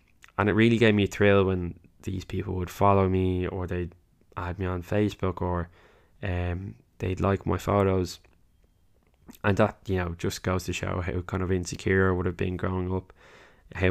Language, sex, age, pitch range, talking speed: English, male, 10-29, 90-100 Hz, 190 wpm